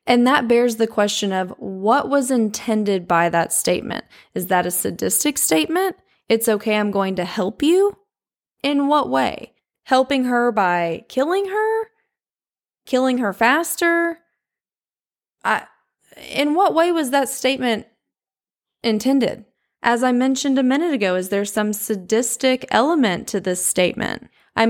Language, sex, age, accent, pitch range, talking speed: English, female, 20-39, American, 190-265 Hz, 140 wpm